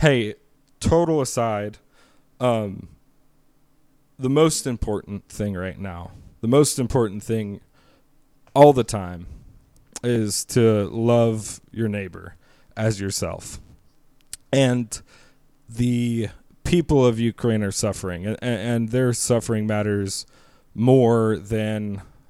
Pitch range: 105-120 Hz